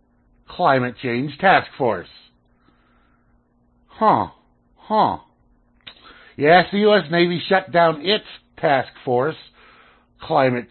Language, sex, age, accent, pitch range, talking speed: English, male, 60-79, American, 110-155 Hz, 90 wpm